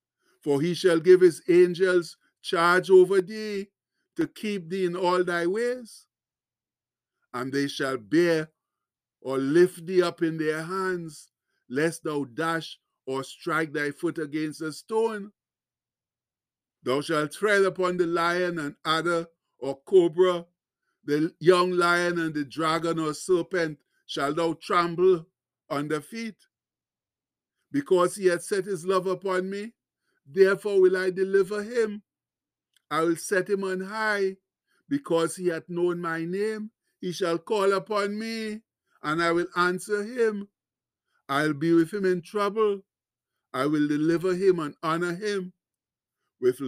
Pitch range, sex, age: 155-190 Hz, male, 50-69